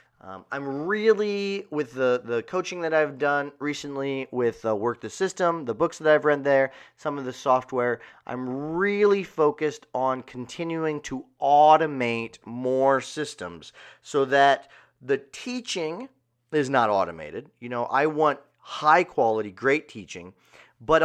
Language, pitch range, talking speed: English, 125-160 Hz, 145 wpm